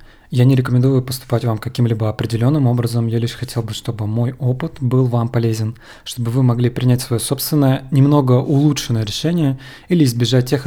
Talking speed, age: 170 wpm, 20-39